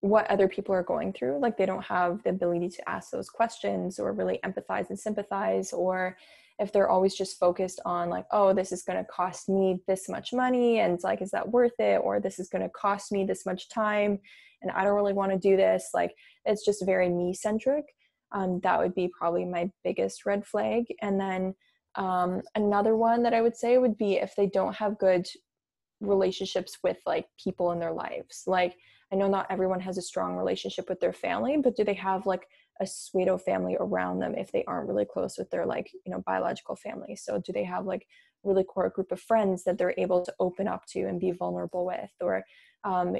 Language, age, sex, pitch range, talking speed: English, 20-39, female, 180-205 Hz, 220 wpm